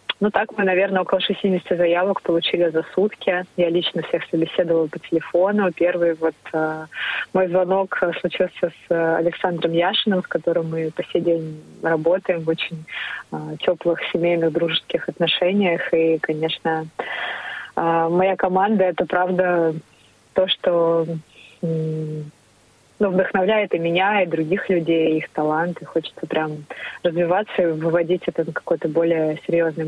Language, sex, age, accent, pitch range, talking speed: Russian, female, 20-39, native, 165-185 Hz, 135 wpm